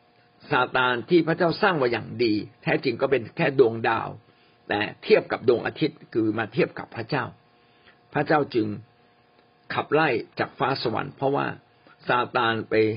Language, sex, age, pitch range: Thai, male, 60-79, 120-155 Hz